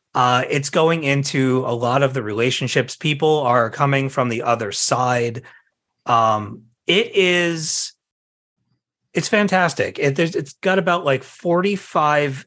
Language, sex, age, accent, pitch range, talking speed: English, male, 30-49, American, 115-140 Hz, 135 wpm